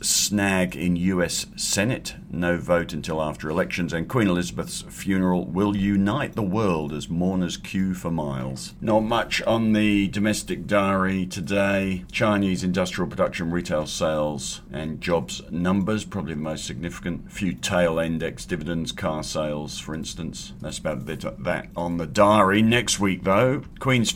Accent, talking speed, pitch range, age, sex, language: British, 155 wpm, 80-100 Hz, 50-69, male, English